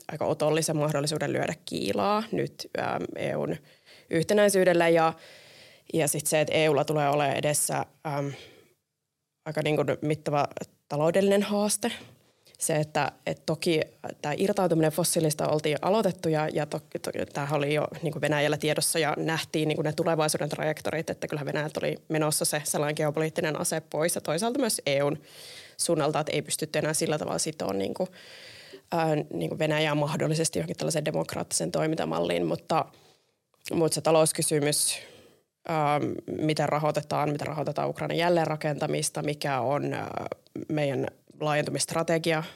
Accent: native